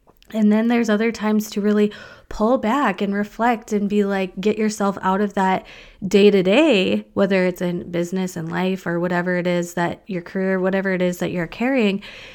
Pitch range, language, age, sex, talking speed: 190-215 Hz, English, 20-39, female, 200 wpm